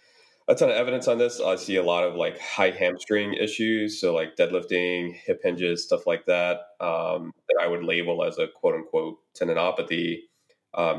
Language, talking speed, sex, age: English, 185 wpm, male, 20-39